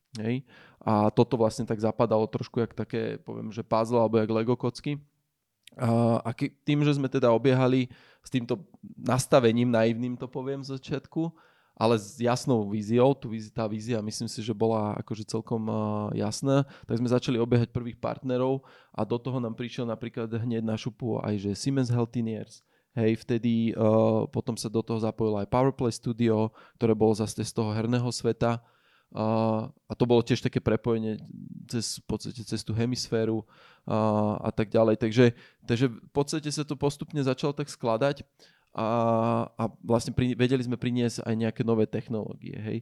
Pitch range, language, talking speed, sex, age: 110-130 Hz, Slovak, 165 wpm, male, 20-39